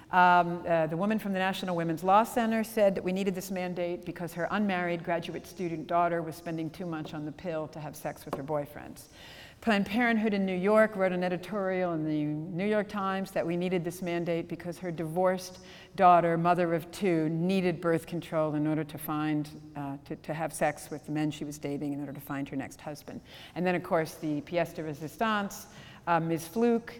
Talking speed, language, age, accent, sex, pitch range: 215 wpm, English, 50-69, American, female, 160-190 Hz